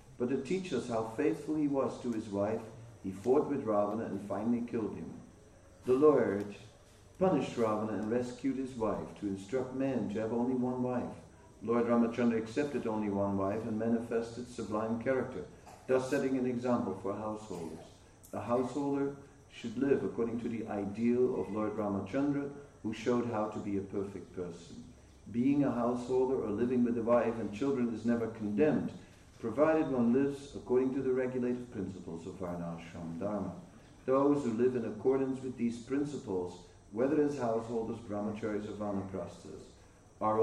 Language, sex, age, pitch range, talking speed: English, male, 50-69, 95-125 Hz, 160 wpm